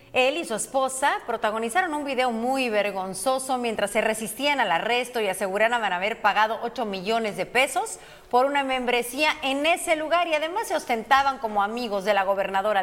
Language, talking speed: Spanish, 175 wpm